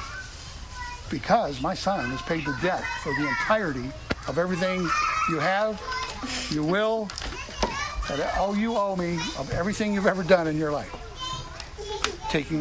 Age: 60-79